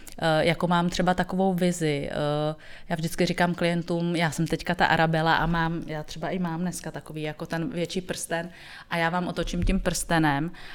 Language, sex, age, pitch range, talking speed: Czech, female, 30-49, 155-175 Hz, 175 wpm